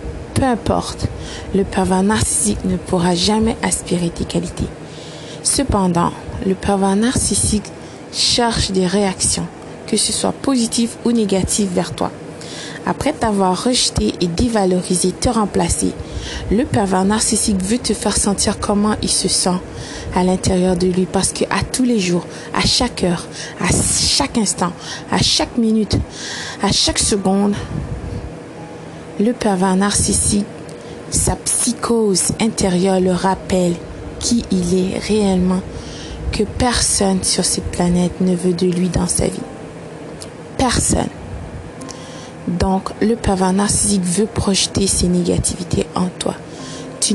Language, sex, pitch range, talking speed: French, female, 185-215 Hz, 130 wpm